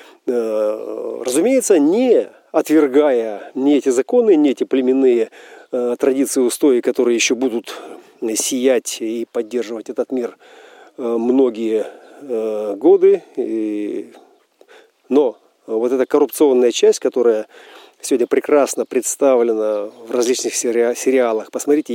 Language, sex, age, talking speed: Russian, male, 40-59, 95 wpm